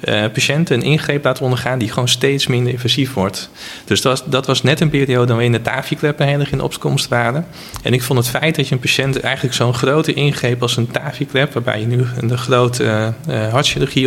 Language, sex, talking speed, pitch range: Dutch, male, 240 wpm, 115-140 Hz